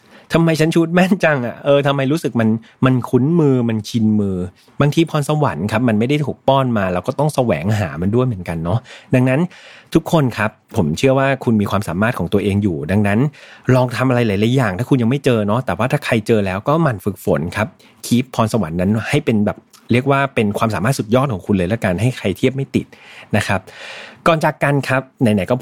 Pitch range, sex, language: 110-140 Hz, male, Thai